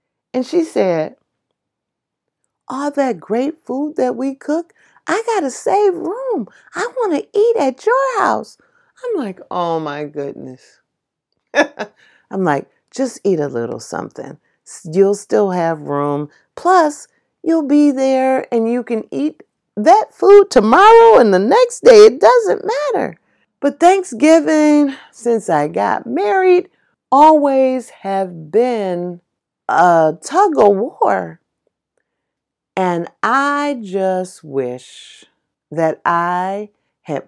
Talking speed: 120 wpm